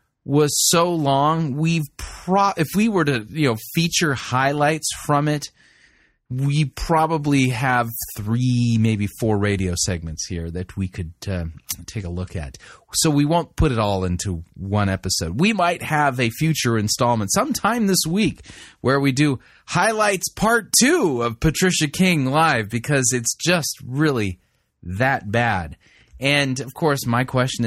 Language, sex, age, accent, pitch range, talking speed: English, male, 30-49, American, 105-155 Hz, 155 wpm